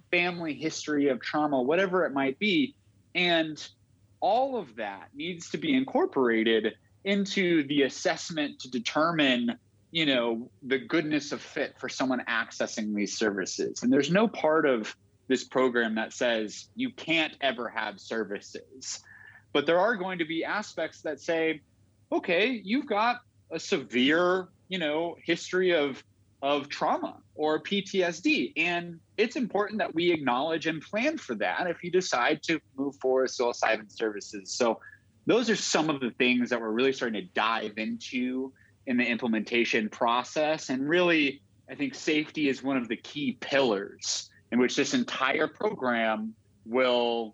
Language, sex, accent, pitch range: English, male, American, 115-175 Hz